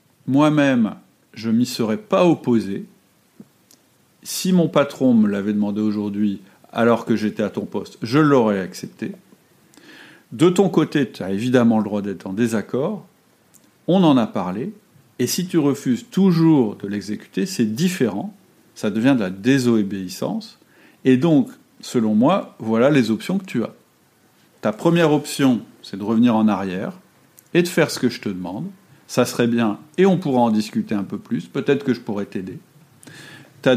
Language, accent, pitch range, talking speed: French, French, 110-160 Hz, 170 wpm